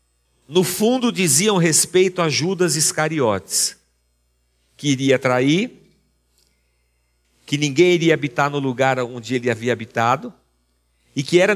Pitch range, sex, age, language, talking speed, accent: 145-200 Hz, male, 50-69, Portuguese, 120 wpm, Brazilian